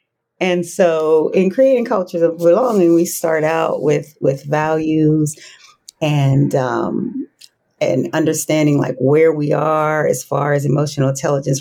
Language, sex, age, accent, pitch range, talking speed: English, female, 40-59, American, 155-190 Hz, 135 wpm